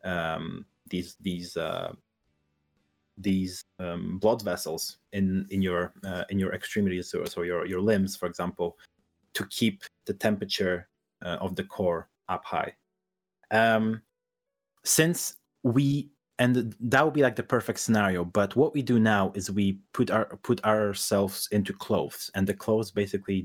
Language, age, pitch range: English, 30-49, 95-110 Hz